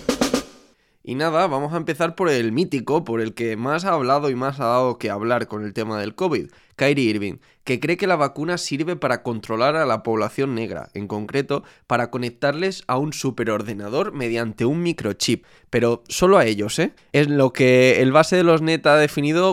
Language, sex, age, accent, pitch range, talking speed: Spanish, male, 20-39, Spanish, 115-150 Hz, 195 wpm